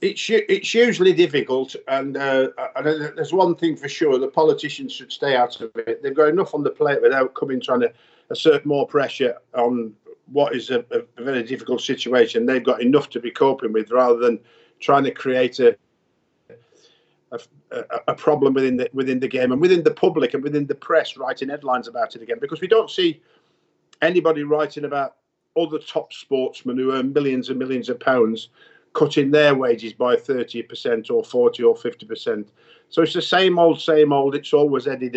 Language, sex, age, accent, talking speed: English, male, 50-69, British, 185 wpm